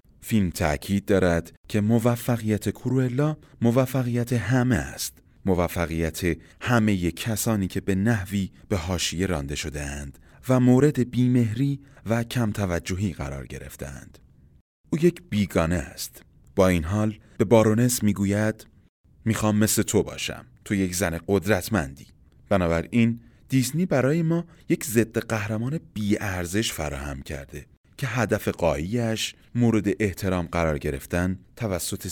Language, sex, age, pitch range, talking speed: Persian, male, 30-49, 80-115 Hz, 120 wpm